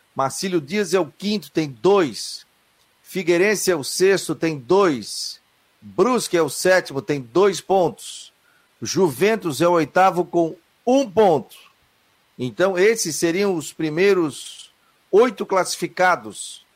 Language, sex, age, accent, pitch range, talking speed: Portuguese, male, 50-69, Brazilian, 145-185 Hz, 120 wpm